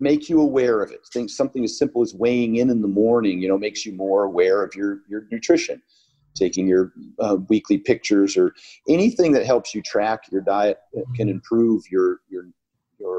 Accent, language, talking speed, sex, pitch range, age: American, English, 200 wpm, male, 100-170 Hz, 40-59